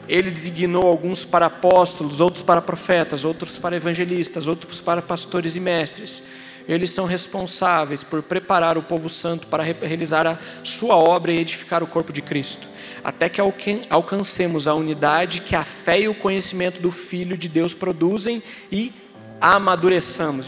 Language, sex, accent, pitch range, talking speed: Portuguese, male, Brazilian, 160-200 Hz, 155 wpm